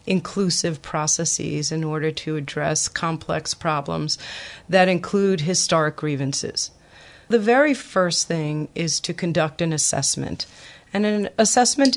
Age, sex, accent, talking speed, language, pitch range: 40-59, female, American, 120 wpm, English, 160-205 Hz